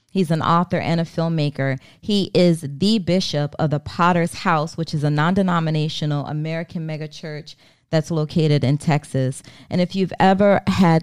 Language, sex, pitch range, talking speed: English, female, 150-170 Hz, 165 wpm